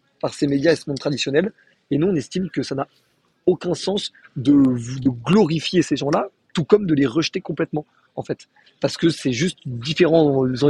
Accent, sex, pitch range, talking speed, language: French, male, 135-165 Hz, 195 wpm, French